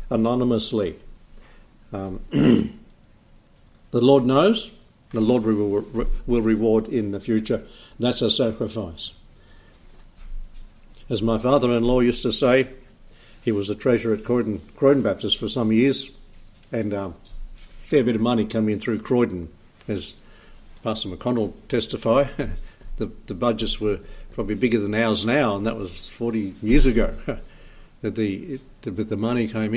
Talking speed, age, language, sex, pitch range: 140 wpm, 60-79, English, male, 105-120 Hz